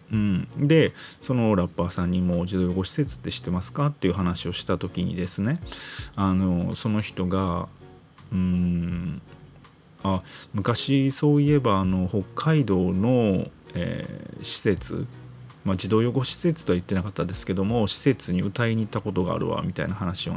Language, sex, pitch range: Japanese, male, 90-110 Hz